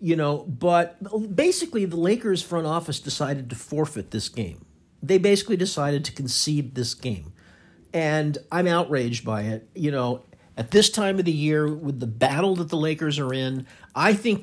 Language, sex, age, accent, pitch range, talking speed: English, male, 50-69, American, 125-165 Hz, 180 wpm